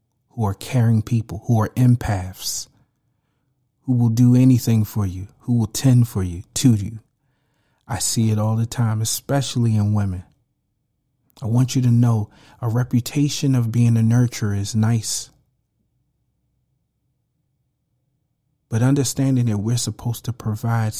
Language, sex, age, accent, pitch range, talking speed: English, male, 40-59, American, 110-130 Hz, 140 wpm